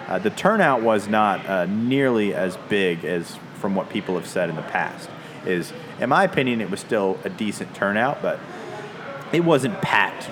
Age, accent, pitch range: 30-49, American, 95-120 Hz